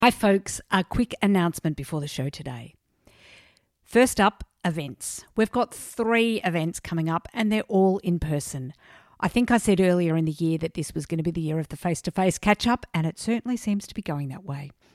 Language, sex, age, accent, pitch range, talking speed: English, female, 50-69, Australian, 165-225 Hz, 210 wpm